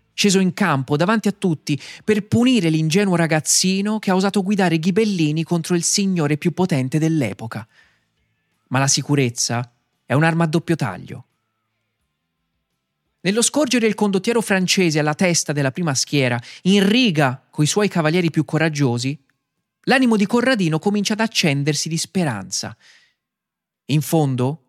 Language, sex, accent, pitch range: Italian, male, native, 135-190 Hz